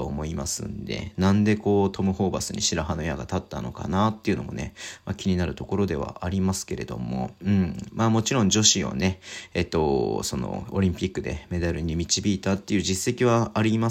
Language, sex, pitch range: Japanese, male, 90-110 Hz